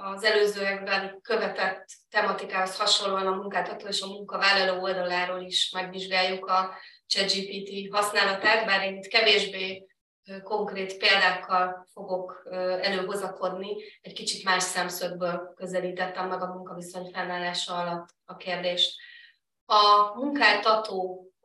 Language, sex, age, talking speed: Hungarian, female, 20-39, 105 wpm